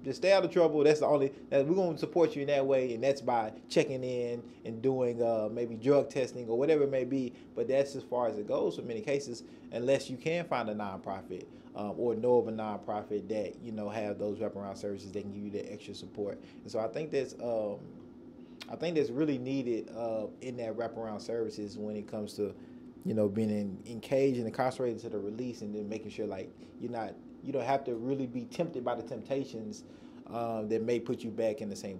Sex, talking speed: male, 235 wpm